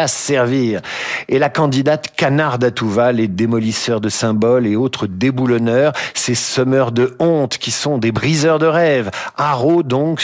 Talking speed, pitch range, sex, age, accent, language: 150 wpm, 110-150 Hz, male, 50-69, French, French